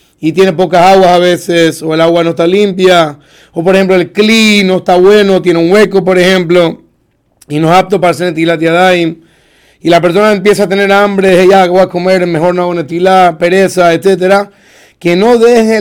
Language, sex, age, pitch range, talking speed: Spanish, male, 30-49, 165-195 Hz, 195 wpm